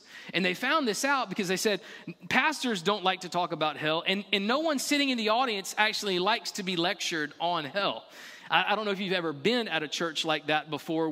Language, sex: English, male